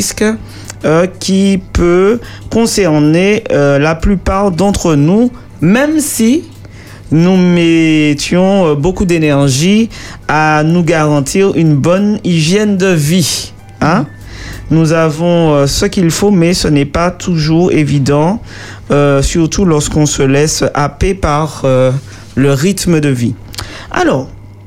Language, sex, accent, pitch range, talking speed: French, male, French, 135-185 Hz, 120 wpm